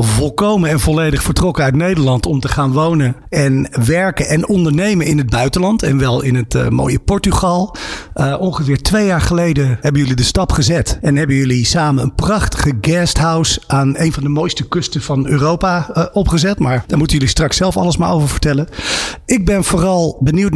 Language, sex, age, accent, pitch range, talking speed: Dutch, male, 50-69, Dutch, 135-175 Hz, 190 wpm